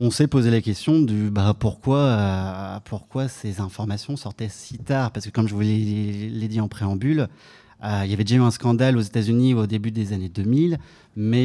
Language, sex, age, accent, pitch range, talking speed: French, male, 30-49, French, 105-125 Hz, 220 wpm